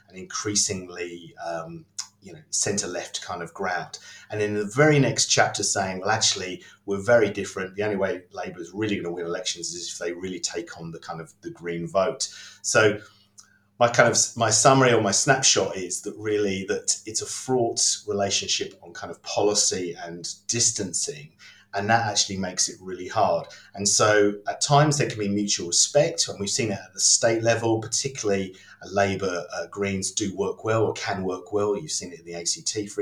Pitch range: 95-110 Hz